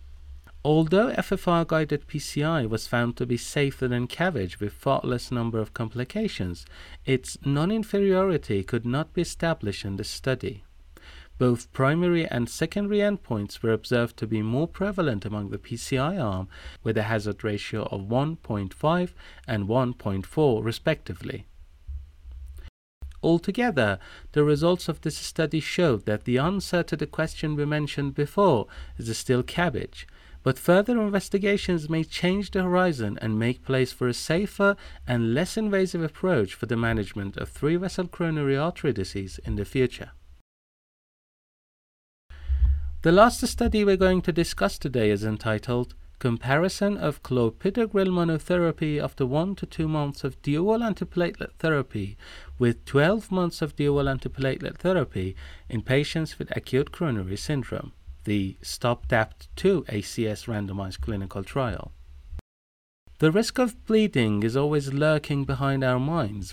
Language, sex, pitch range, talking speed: Persian, male, 105-165 Hz, 135 wpm